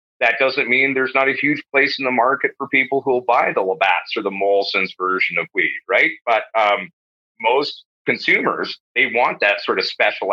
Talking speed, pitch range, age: 205 wpm, 115-150 Hz, 30-49